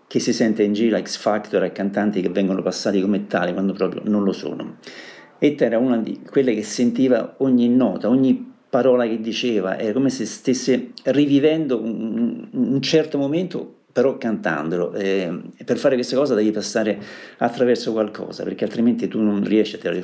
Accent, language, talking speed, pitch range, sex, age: native, Italian, 175 wpm, 105-140 Hz, male, 50-69